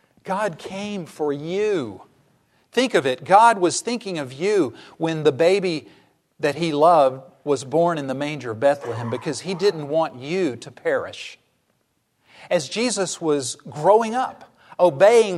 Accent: American